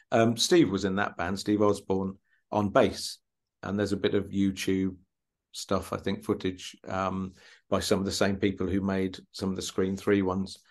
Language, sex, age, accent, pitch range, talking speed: English, male, 50-69, British, 95-105 Hz, 195 wpm